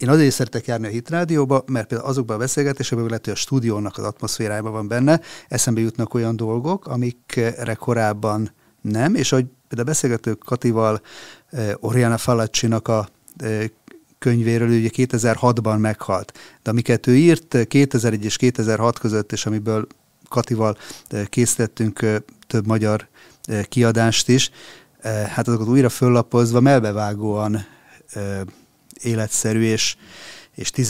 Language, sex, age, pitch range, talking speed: Hungarian, male, 30-49, 110-125 Hz, 130 wpm